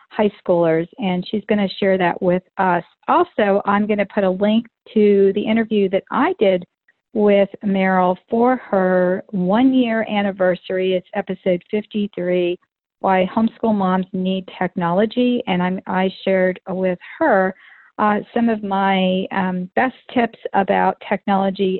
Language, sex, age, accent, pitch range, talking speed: English, female, 50-69, American, 185-230 Hz, 145 wpm